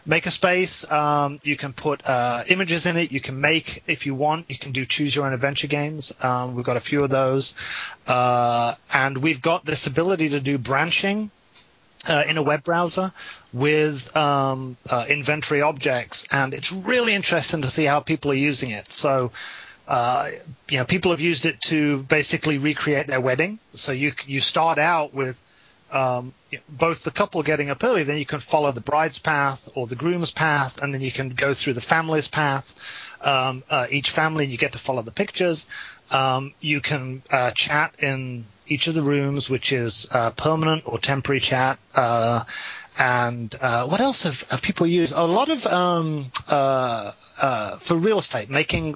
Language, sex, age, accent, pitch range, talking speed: English, male, 30-49, British, 130-160 Hz, 190 wpm